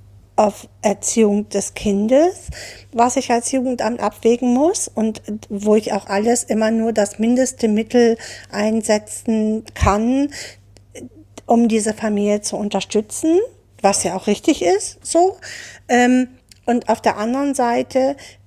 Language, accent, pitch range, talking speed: German, German, 200-240 Hz, 125 wpm